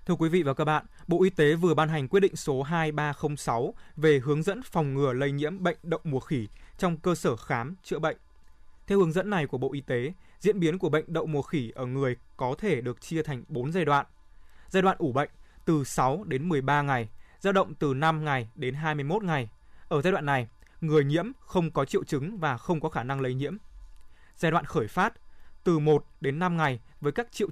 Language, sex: Vietnamese, male